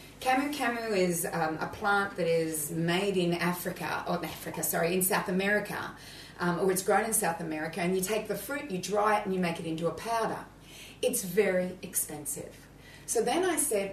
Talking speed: 200 wpm